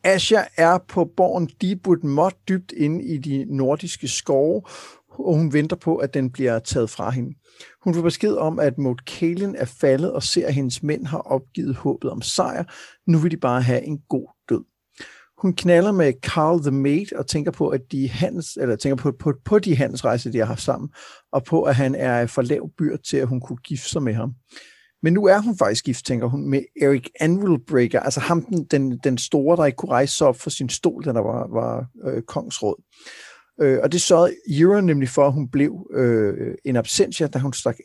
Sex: male